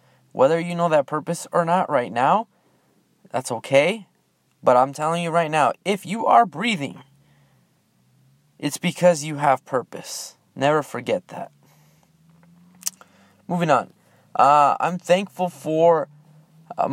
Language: English